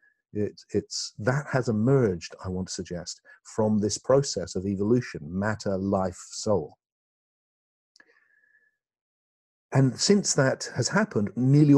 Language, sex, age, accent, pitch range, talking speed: English, male, 50-69, British, 105-135 Hz, 115 wpm